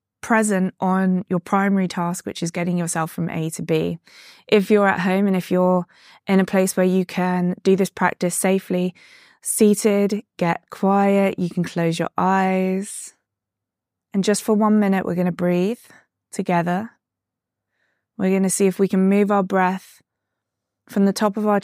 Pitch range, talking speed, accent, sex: 160-195 Hz, 175 wpm, British, female